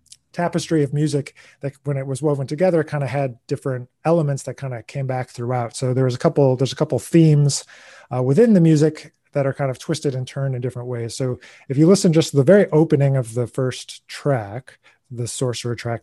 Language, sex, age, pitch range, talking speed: English, male, 30-49, 125-150 Hz, 220 wpm